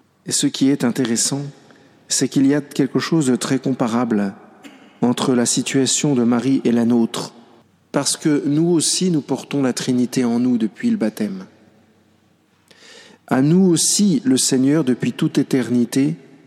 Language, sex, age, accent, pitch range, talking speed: French, male, 50-69, French, 125-160 Hz, 155 wpm